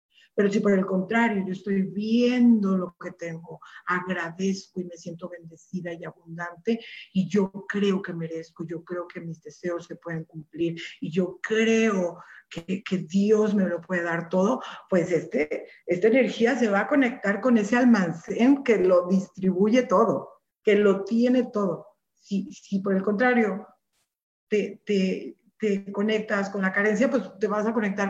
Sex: female